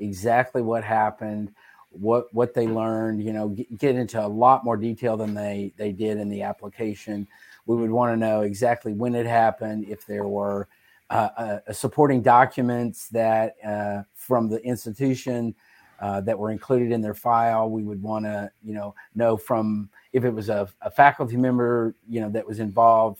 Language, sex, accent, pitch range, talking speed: English, male, American, 110-130 Hz, 180 wpm